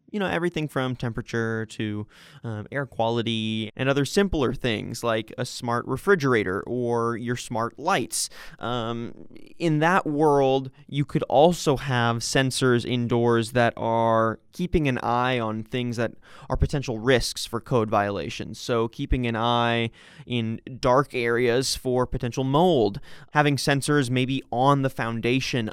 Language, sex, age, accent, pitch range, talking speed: English, male, 20-39, American, 115-140 Hz, 140 wpm